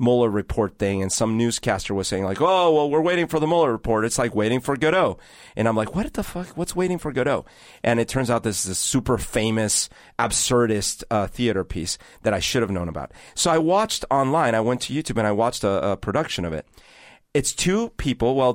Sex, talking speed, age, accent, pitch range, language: male, 230 wpm, 40-59, American, 105-140 Hz, English